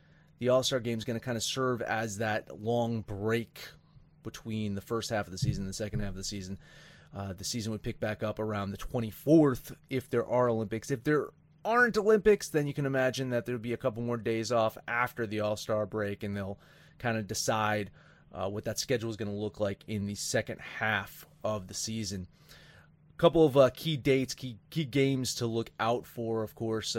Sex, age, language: male, 30-49, English